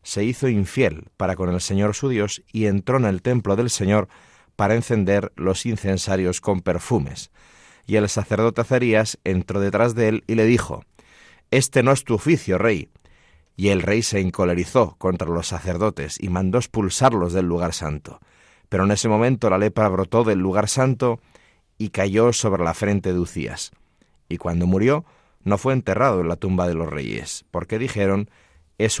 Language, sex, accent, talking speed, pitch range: Spanish, male, Spanish, 175 wpm, 95-115 Hz